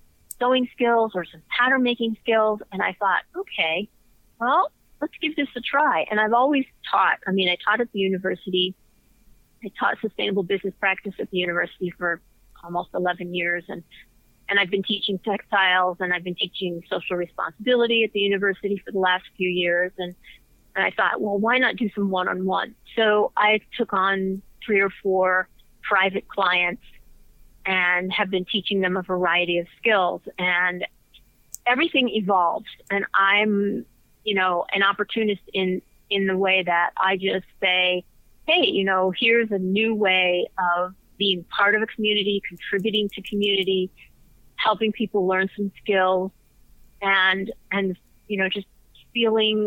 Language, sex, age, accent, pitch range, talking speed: English, female, 40-59, American, 185-215 Hz, 160 wpm